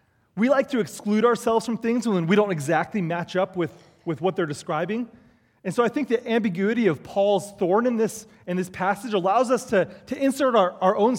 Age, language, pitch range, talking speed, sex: 30-49, French, 165-230 Hz, 215 wpm, male